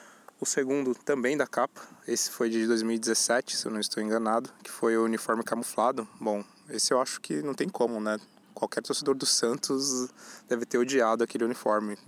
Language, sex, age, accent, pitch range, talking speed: Portuguese, male, 20-39, Brazilian, 110-120 Hz, 185 wpm